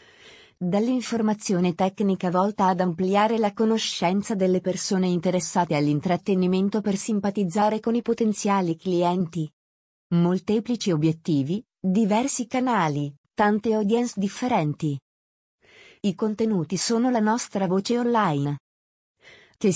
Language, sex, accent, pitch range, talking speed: Italian, female, native, 175-225 Hz, 95 wpm